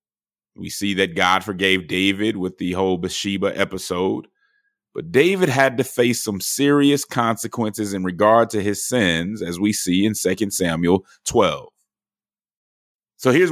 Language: English